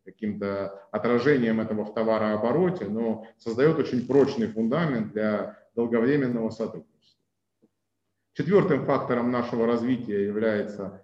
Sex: male